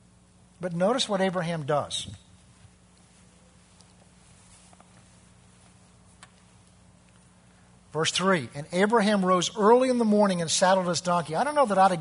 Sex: male